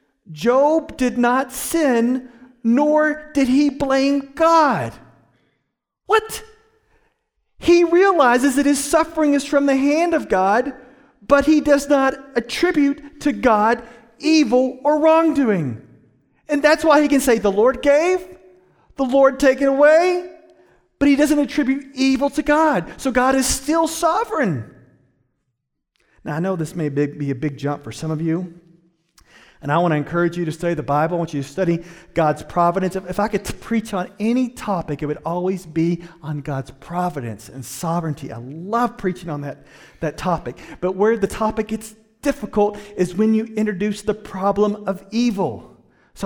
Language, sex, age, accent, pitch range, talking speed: English, male, 40-59, American, 175-275 Hz, 160 wpm